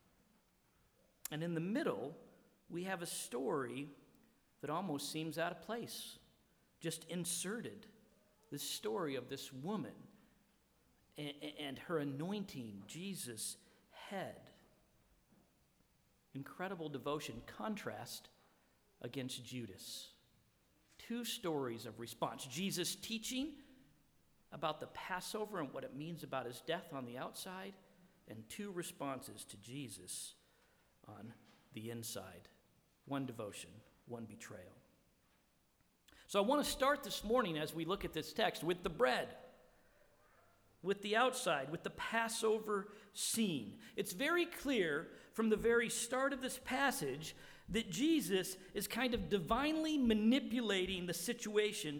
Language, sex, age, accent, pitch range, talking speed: English, male, 50-69, American, 145-220 Hz, 120 wpm